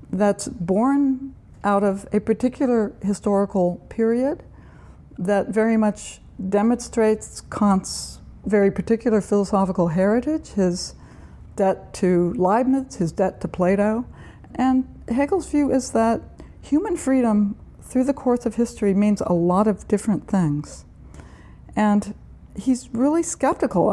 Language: English